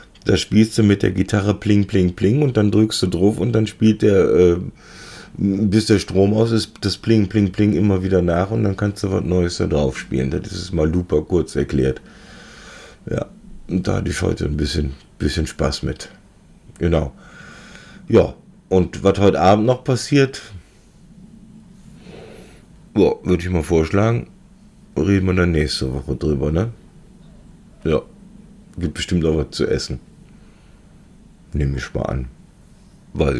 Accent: German